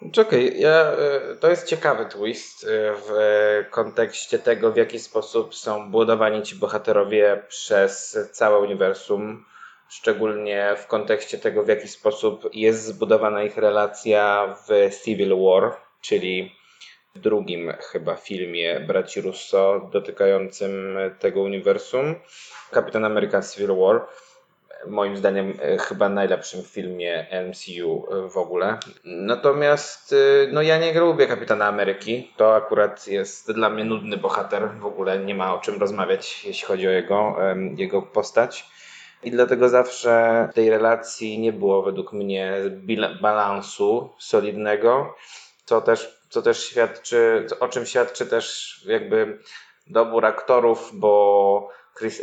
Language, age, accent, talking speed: Polish, 20-39, native, 125 wpm